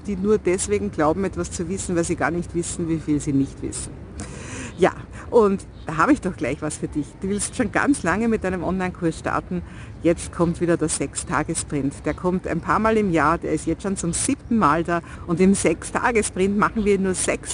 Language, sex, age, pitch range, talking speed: German, female, 50-69, 155-200 Hz, 215 wpm